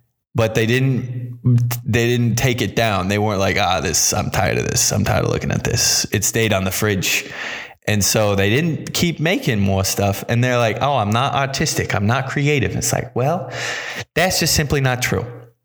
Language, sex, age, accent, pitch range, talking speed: English, male, 20-39, American, 110-140 Hz, 210 wpm